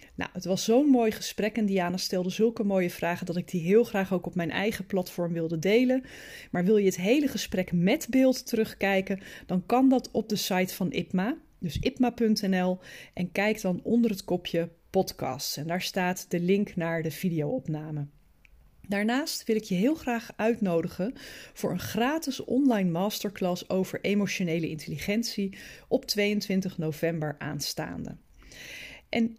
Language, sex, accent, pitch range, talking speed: Dutch, female, Dutch, 180-230 Hz, 160 wpm